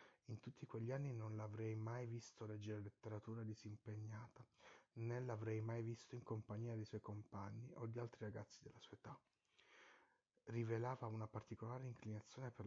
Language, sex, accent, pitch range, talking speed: Italian, male, native, 105-120 Hz, 150 wpm